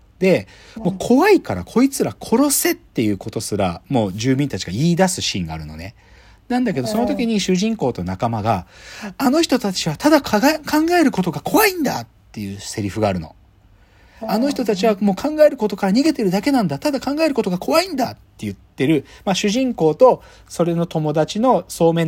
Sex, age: male, 40-59